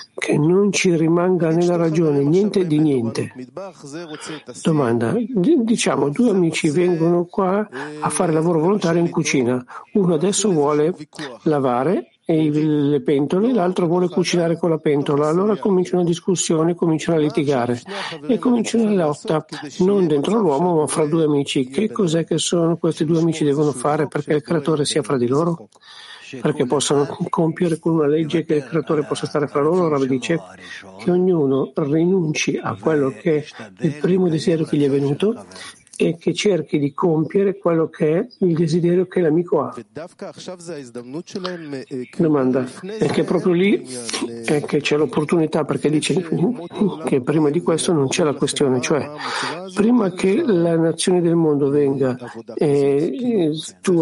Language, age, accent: Italian, 60-79, native